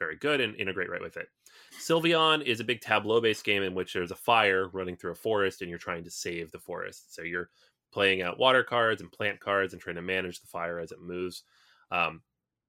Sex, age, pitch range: male, 30-49, 90-115 Hz